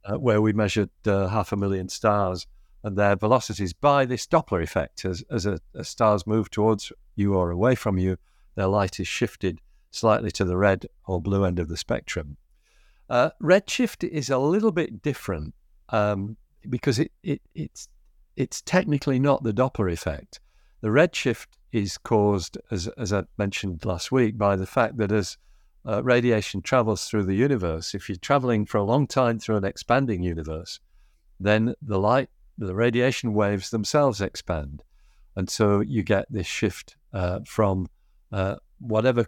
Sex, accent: male, British